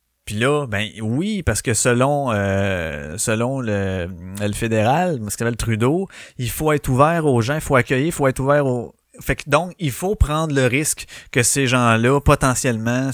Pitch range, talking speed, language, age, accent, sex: 110-140 Hz, 185 wpm, French, 30-49, Canadian, male